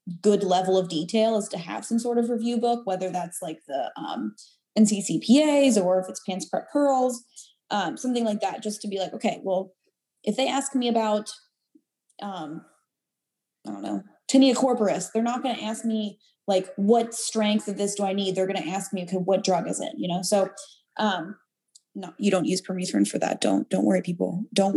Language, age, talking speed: English, 20-39, 205 wpm